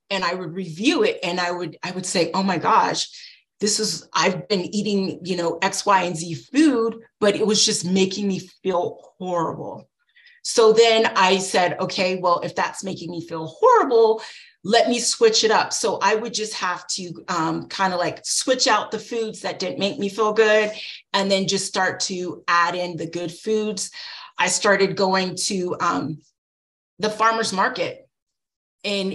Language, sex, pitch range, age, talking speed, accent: English, female, 175-220 Hz, 30-49, 185 wpm, American